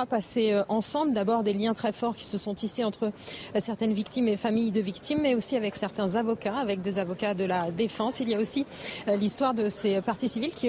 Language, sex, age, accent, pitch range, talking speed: French, female, 40-59, French, 205-240 Hz, 220 wpm